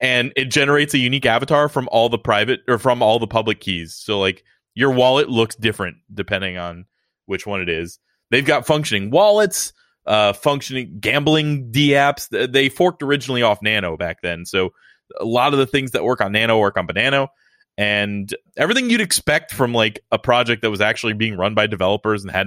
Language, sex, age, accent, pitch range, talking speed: English, male, 20-39, American, 105-145 Hz, 200 wpm